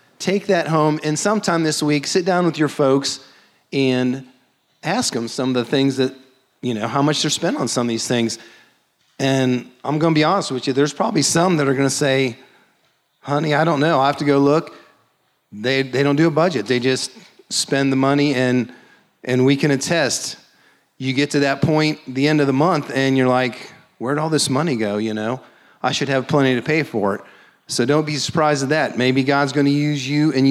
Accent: American